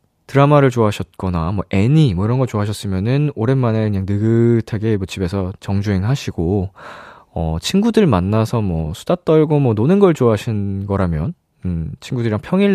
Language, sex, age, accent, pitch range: Korean, male, 20-39, native, 95-150 Hz